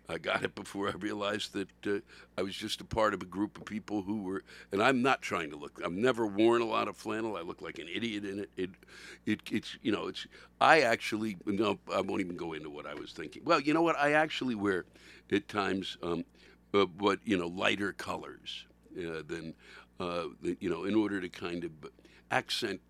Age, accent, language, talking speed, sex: 60-79, American, English, 220 wpm, male